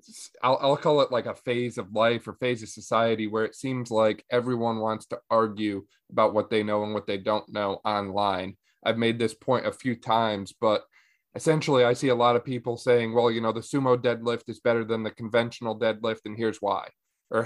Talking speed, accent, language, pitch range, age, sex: 215 wpm, American, English, 110-125 Hz, 20-39, male